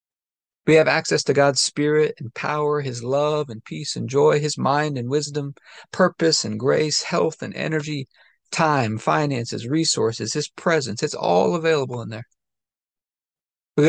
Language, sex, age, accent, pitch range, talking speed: English, male, 40-59, American, 125-165 Hz, 150 wpm